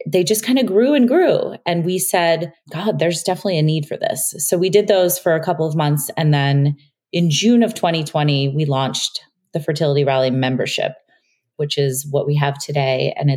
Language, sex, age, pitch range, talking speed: English, female, 30-49, 145-180 Hz, 200 wpm